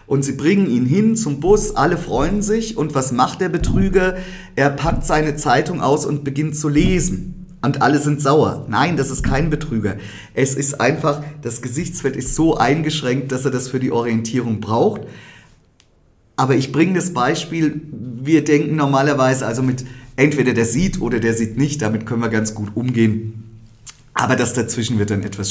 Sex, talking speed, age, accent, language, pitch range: male, 180 wpm, 40-59, German, German, 105-145 Hz